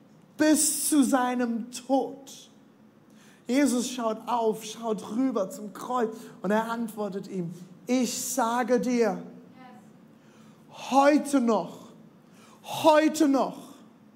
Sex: male